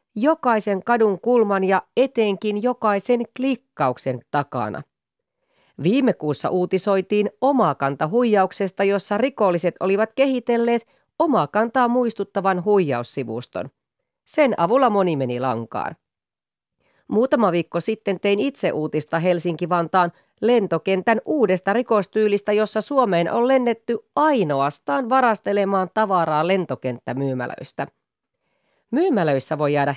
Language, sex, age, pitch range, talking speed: Finnish, female, 30-49, 155-230 Hz, 90 wpm